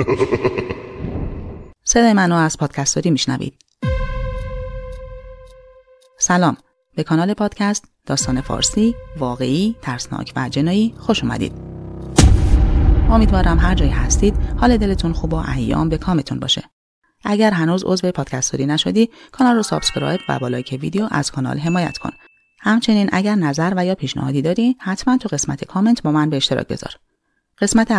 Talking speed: 135 wpm